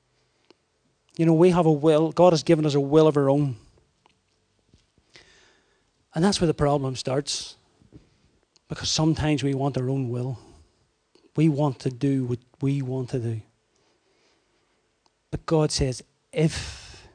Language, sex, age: English, male, 30-49